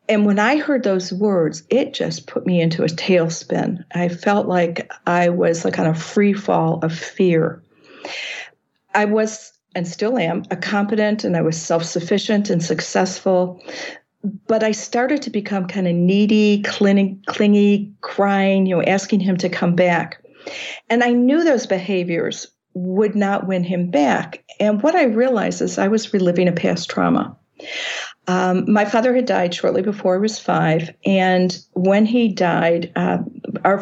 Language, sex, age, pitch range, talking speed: English, female, 50-69, 175-215 Hz, 165 wpm